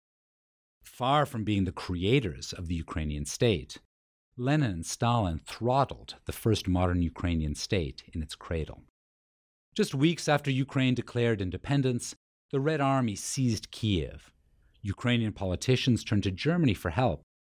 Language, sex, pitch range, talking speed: English, male, 85-130 Hz, 135 wpm